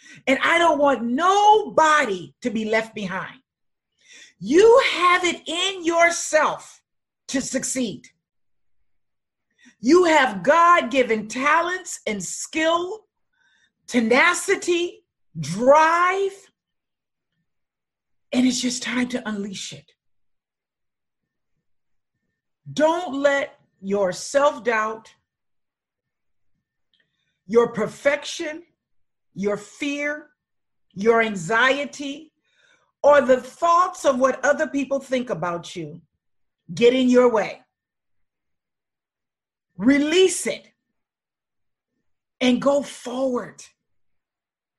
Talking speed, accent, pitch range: 80 wpm, American, 205-335 Hz